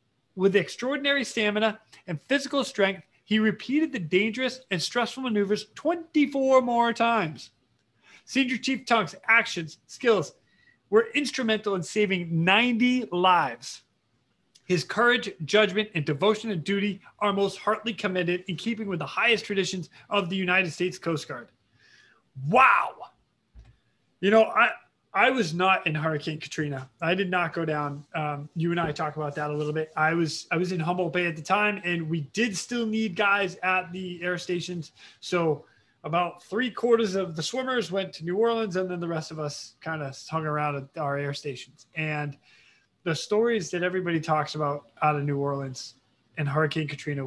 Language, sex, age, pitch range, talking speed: English, male, 30-49, 150-210 Hz, 170 wpm